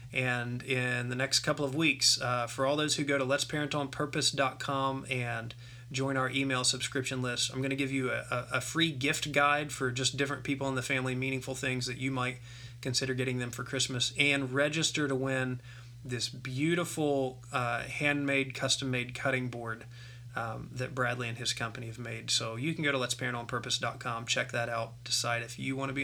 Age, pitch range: 20-39, 120-140 Hz